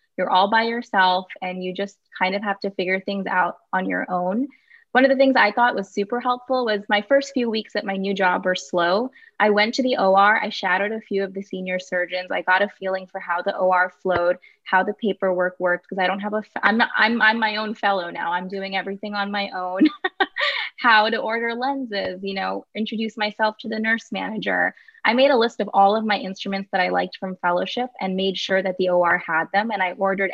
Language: English